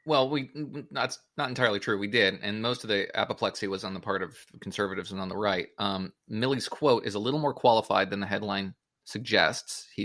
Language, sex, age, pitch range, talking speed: English, male, 20-39, 100-130 Hz, 215 wpm